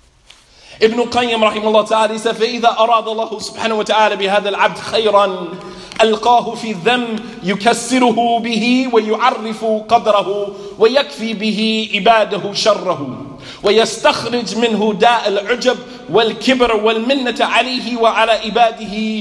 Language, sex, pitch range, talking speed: English, male, 190-230 Hz, 105 wpm